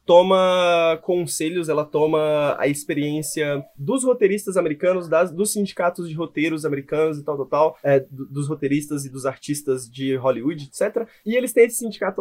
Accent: Brazilian